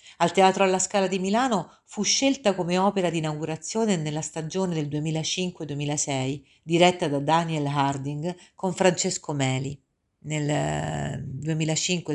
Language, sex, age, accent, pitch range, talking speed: Italian, female, 50-69, native, 145-200 Hz, 120 wpm